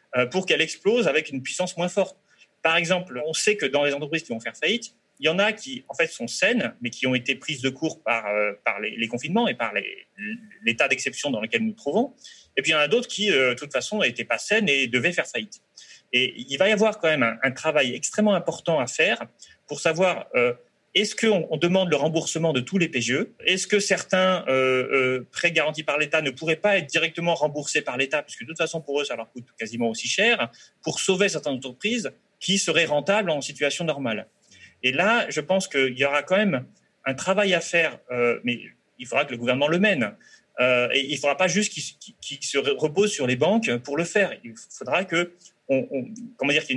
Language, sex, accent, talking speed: French, male, French, 235 wpm